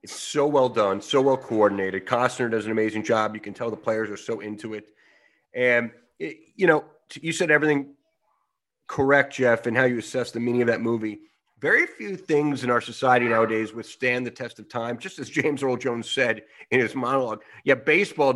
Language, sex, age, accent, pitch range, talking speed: English, male, 30-49, American, 115-150 Hz, 205 wpm